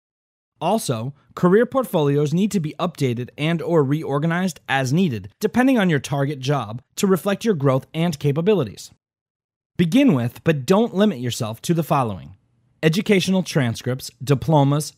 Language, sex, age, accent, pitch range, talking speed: English, male, 30-49, American, 130-185 Hz, 140 wpm